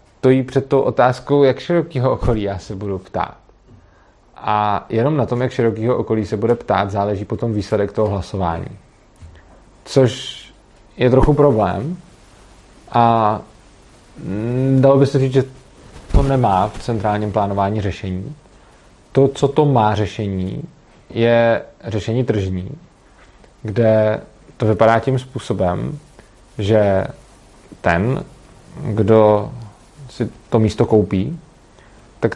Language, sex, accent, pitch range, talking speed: Czech, male, native, 100-120 Hz, 115 wpm